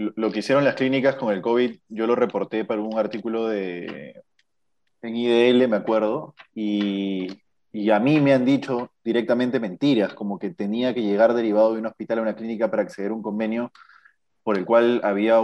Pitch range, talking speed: 110-130 Hz, 190 wpm